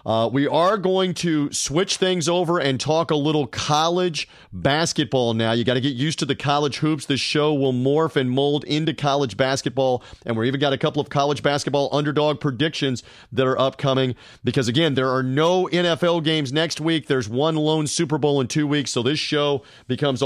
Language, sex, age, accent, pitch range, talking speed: English, male, 40-59, American, 135-165 Hz, 200 wpm